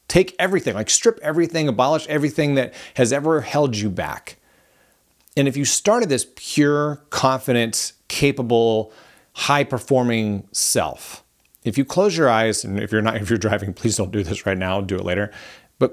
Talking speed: 175 wpm